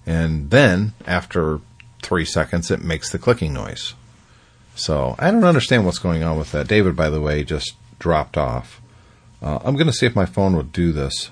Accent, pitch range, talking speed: American, 85-120 Hz, 195 wpm